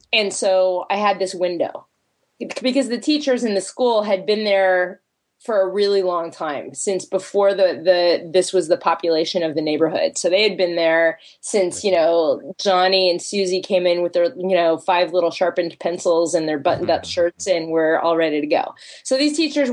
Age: 20-39